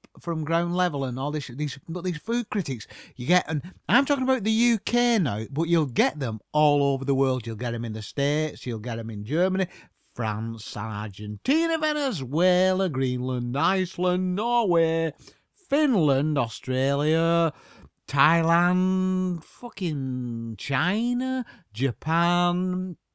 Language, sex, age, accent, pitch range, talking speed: English, male, 50-69, British, 125-205 Hz, 130 wpm